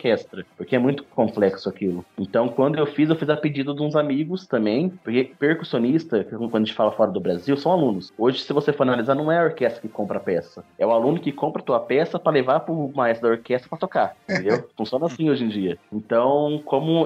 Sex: male